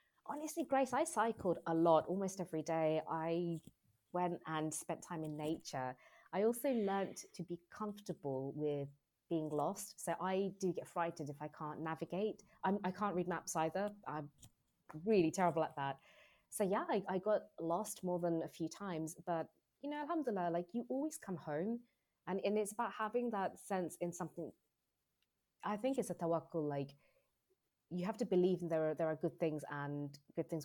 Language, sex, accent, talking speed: English, female, British, 180 wpm